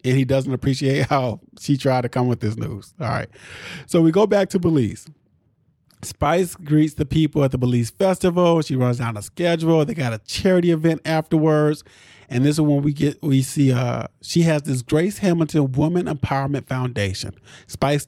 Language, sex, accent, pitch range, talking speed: English, male, American, 120-150 Hz, 190 wpm